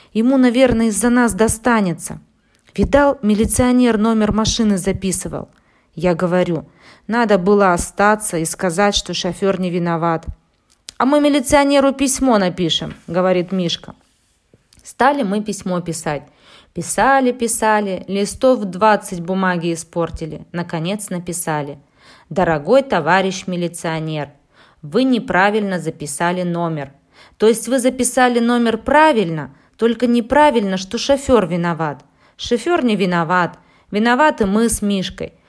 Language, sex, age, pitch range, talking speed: Russian, female, 20-39, 170-235 Hz, 110 wpm